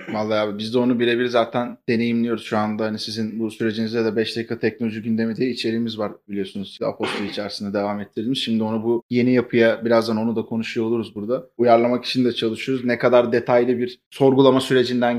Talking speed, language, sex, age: 190 wpm, Turkish, male, 30-49